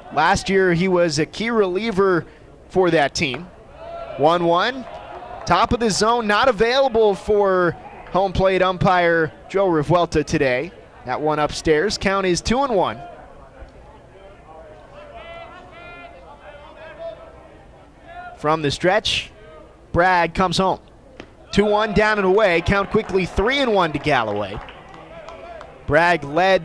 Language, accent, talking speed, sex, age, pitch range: English, American, 115 wpm, male, 20-39, 170-215 Hz